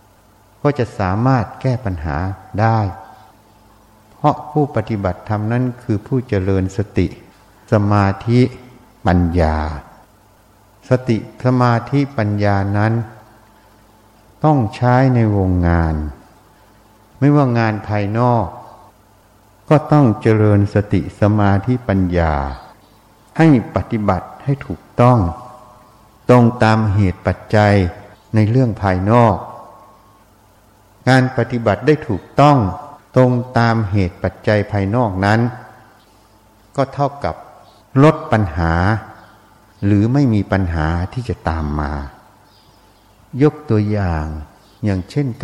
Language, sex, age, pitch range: Thai, male, 60-79, 100-120 Hz